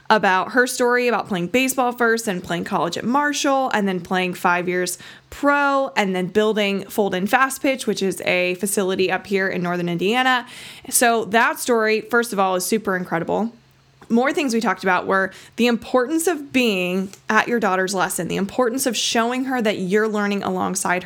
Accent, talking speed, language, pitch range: American, 185 wpm, English, 190-235 Hz